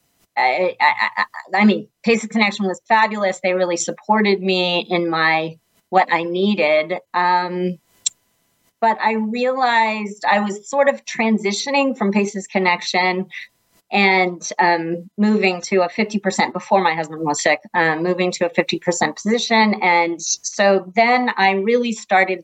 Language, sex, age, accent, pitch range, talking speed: English, female, 30-49, American, 170-210 Hz, 140 wpm